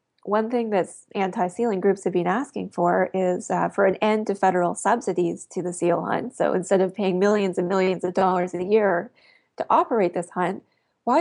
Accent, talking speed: American, 200 wpm